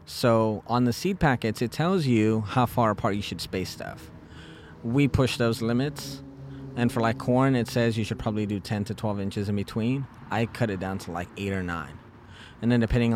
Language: English